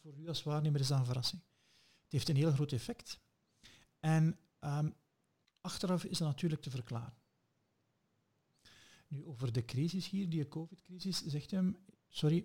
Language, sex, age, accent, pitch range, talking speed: Dutch, male, 50-69, Dutch, 125-160 Hz, 150 wpm